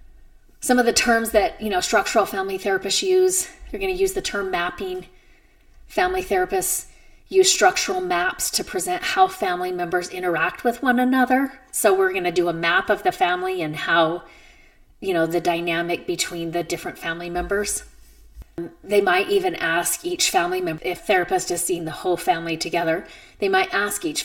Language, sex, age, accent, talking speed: English, female, 30-49, American, 180 wpm